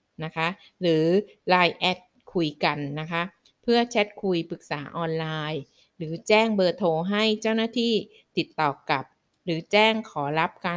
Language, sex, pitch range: Thai, female, 165-205 Hz